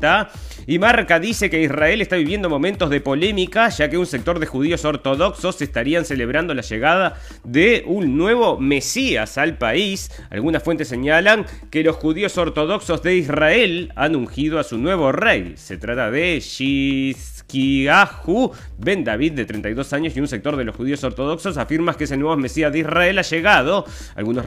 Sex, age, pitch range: male, 30-49, 135-180 Hz